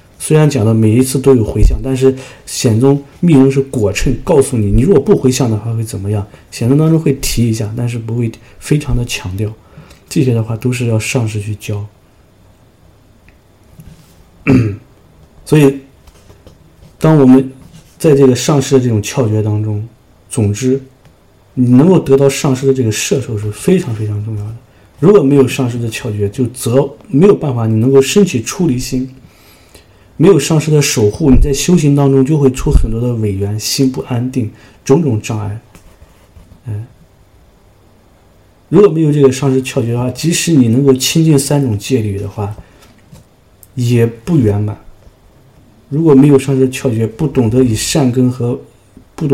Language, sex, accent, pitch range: English, male, Chinese, 105-135 Hz